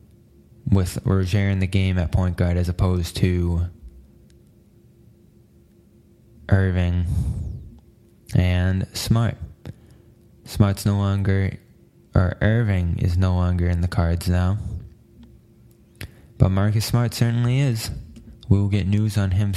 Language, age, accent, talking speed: English, 20-39, American, 115 wpm